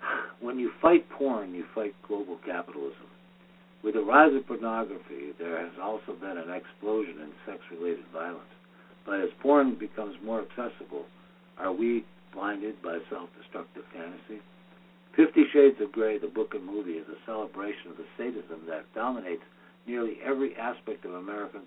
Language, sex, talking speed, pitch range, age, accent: English, male, 150 wpm, 105-135 Hz, 60-79, American